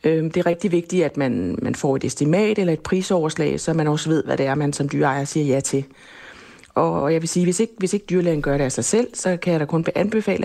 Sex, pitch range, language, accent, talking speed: female, 145-170 Hz, Danish, native, 265 wpm